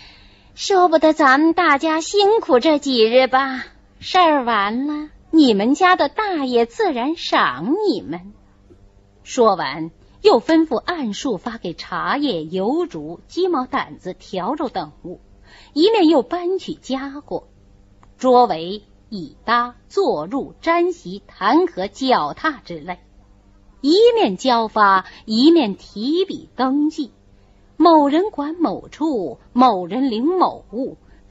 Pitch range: 205-325 Hz